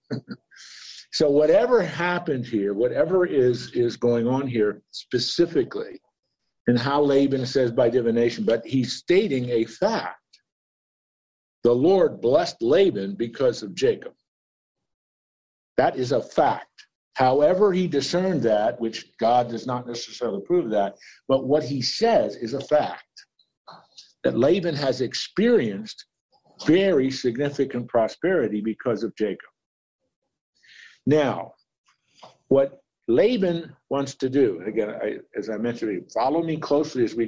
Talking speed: 120 wpm